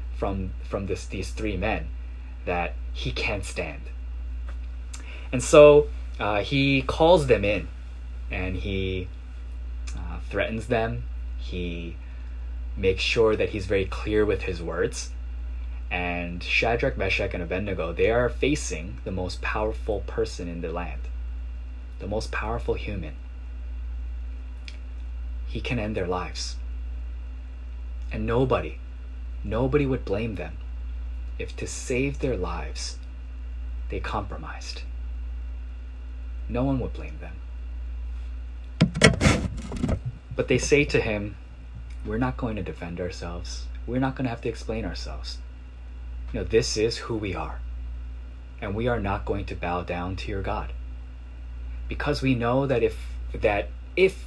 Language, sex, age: Korean, male, 20-39